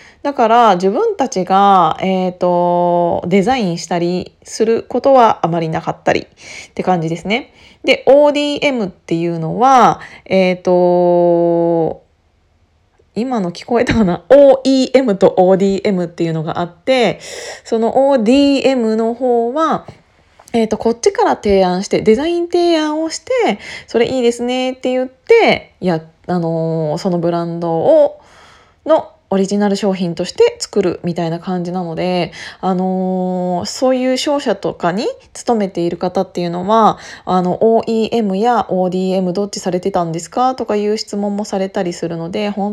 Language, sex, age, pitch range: Japanese, female, 20-39, 180-245 Hz